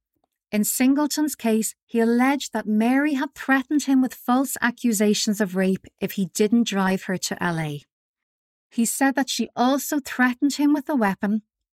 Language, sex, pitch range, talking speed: English, female, 200-255 Hz, 165 wpm